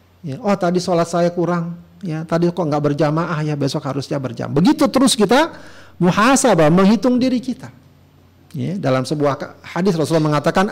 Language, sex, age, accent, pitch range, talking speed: Indonesian, male, 50-69, native, 145-215 Hz, 150 wpm